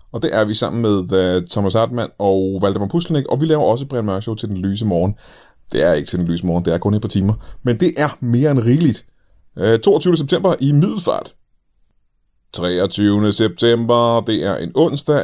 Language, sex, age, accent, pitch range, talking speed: Danish, male, 30-49, native, 100-150 Hz, 205 wpm